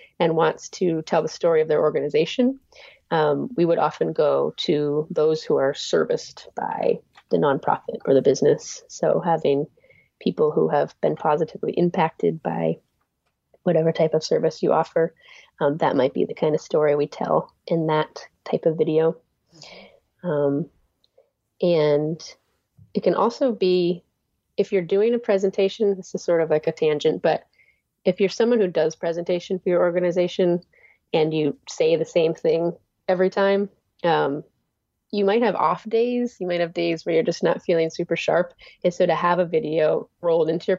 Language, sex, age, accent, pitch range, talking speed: English, female, 30-49, American, 165-245 Hz, 170 wpm